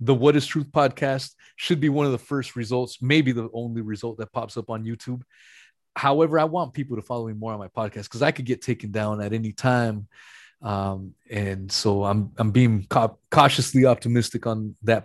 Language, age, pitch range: English, 20-39, 110-130 Hz